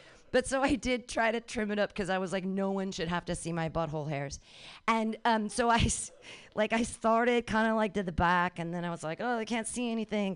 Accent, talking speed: American, 255 wpm